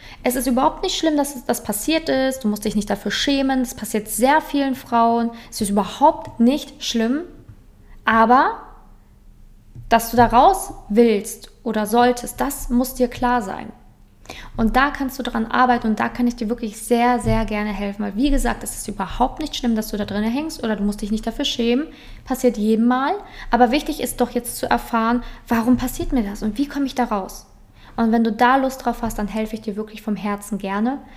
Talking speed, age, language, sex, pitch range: 210 wpm, 20-39, German, female, 215-255 Hz